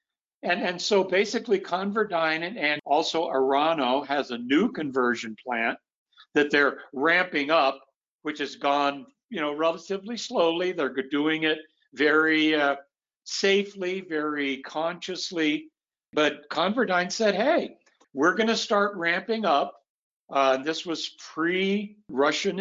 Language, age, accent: English, 60-79, American